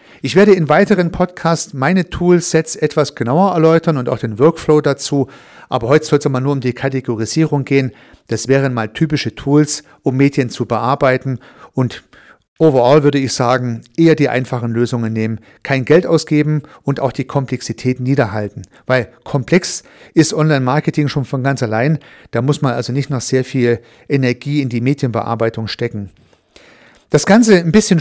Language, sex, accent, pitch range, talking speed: German, male, German, 130-165 Hz, 165 wpm